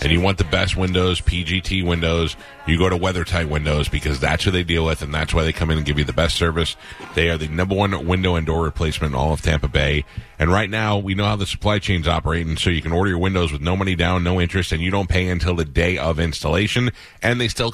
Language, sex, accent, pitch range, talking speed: English, male, American, 80-95 Hz, 265 wpm